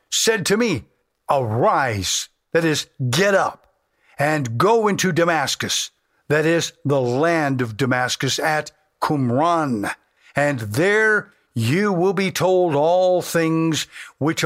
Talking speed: 120 wpm